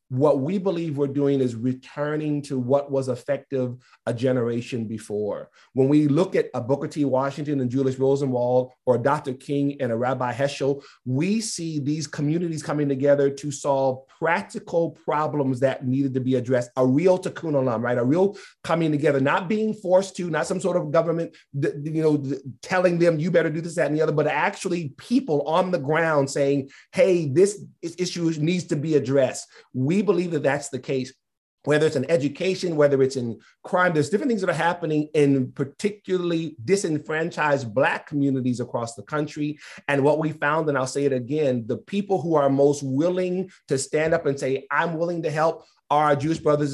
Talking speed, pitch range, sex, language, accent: 190 wpm, 135-165 Hz, male, English, American